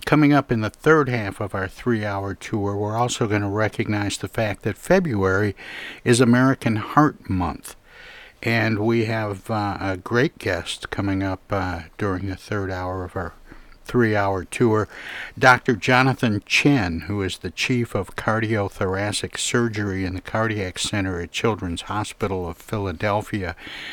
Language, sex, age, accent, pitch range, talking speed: English, male, 60-79, American, 95-115 Hz, 150 wpm